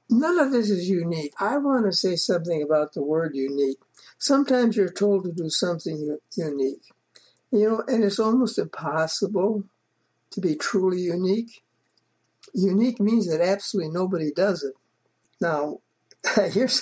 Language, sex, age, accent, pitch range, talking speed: English, male, 60-79, American, 170-215 Hz, 145 wpm